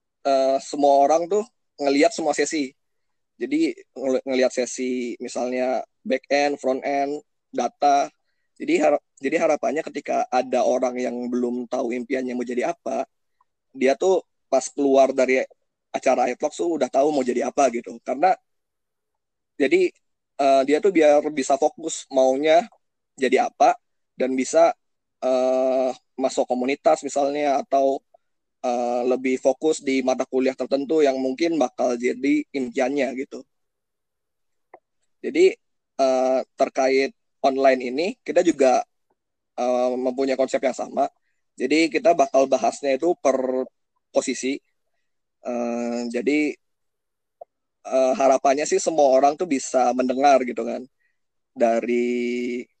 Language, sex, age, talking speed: Indonesian, male, 20-39, 115 wpm